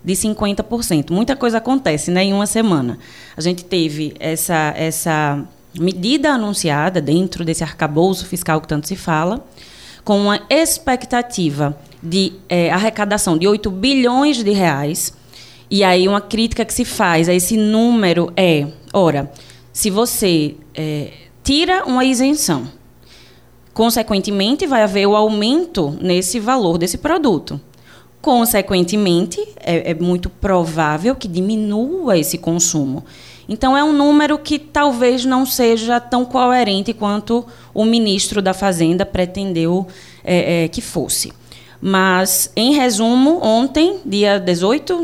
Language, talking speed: Portuguese, 130 wpm